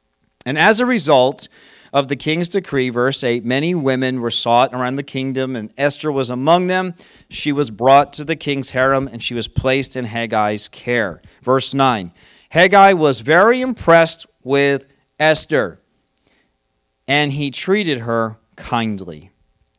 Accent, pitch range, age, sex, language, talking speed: American, 115-150 Hz, 40-59, male, English, 150 wpm